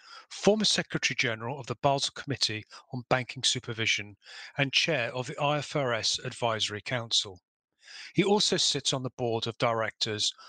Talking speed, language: 145 wpm, English